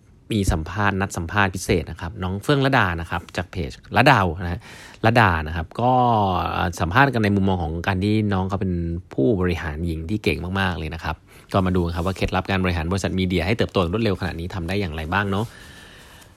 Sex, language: male, Thai